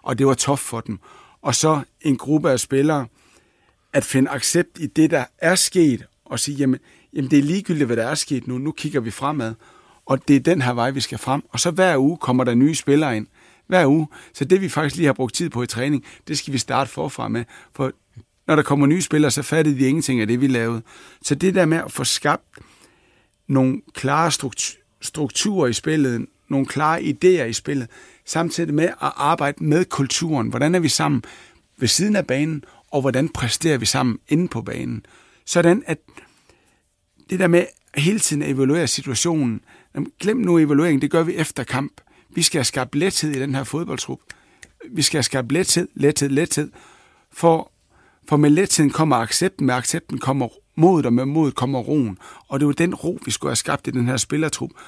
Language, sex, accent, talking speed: Danish, male, native, 205 wpm